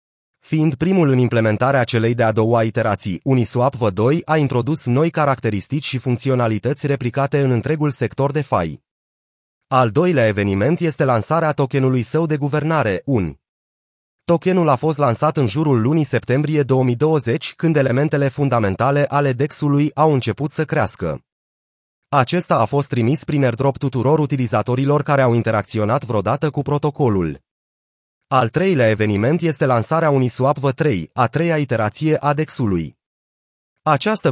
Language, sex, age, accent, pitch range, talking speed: Romanian, male, 30-49, native, 115-150 Hz, 135 wpm